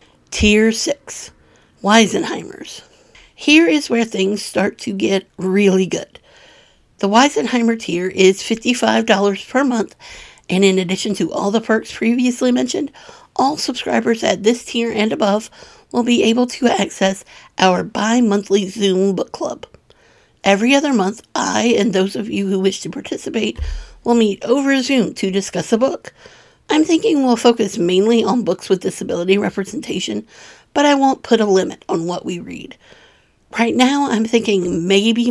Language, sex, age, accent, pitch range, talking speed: English, female, 50-69, American, 195-250 Hz, 155 wpm